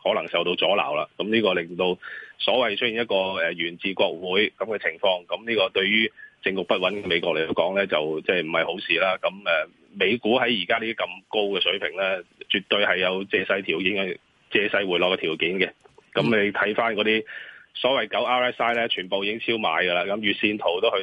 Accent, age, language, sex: native, 30-49, Chinese, male